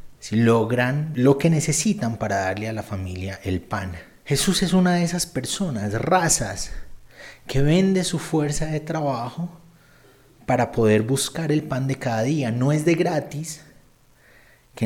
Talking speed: 155 wpm